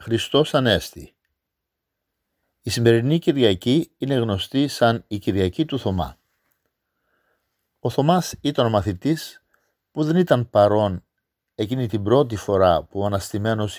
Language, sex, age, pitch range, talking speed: Greek, male, 50-69, 110-155 Hz, 120 wpm